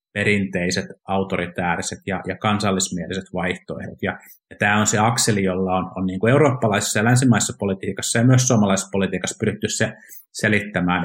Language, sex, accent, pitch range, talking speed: Finnish, male, native, 95-115 Hz, 130 wpm